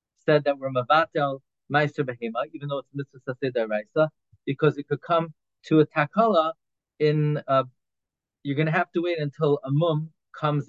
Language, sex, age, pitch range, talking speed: English, male, 30-49, 140-185 Hz, 175 wpm